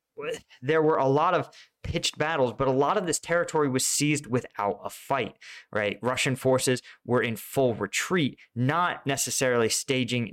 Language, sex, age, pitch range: English, male, 20-39, 115-140 Hz